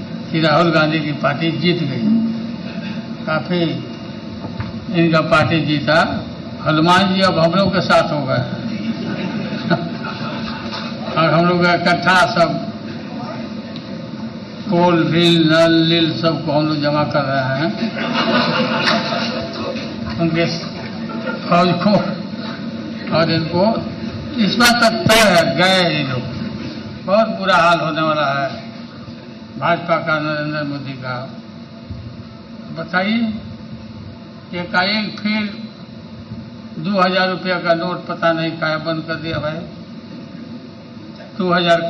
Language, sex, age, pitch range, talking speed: Hindi, male, 60-79, 160-200 Hz, 105 wpm